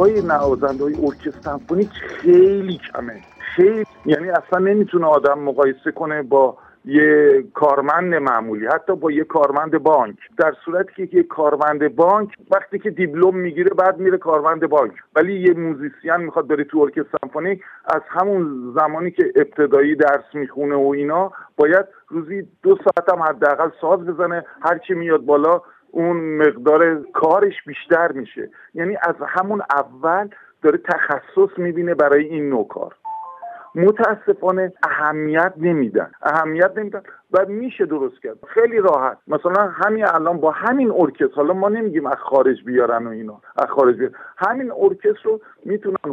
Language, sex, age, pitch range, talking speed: Persian, male, 50-69, 145-205 Hz, 150 wpm